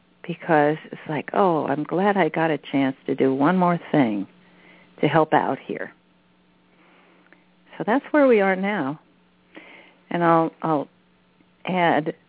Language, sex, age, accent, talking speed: English, female, 50-69, American, 140 wpm